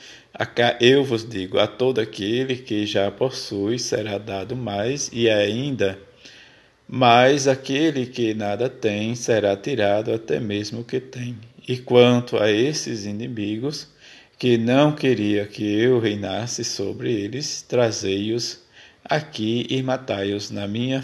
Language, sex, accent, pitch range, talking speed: Portuguese, male, Brazilian, 105-125 Hz, 130 wpm